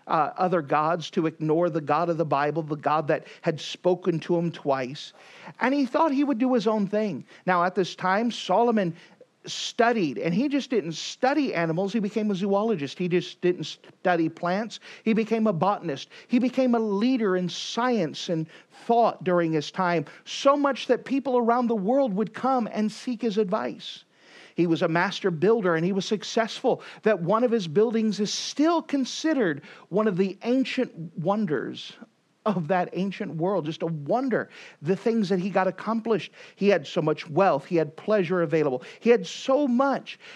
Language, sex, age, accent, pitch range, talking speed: English, male, 50-69, American, 175-230 Hz, 185 wpm